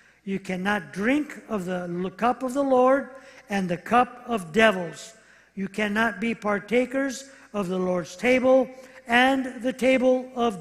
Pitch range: 210-270 Hz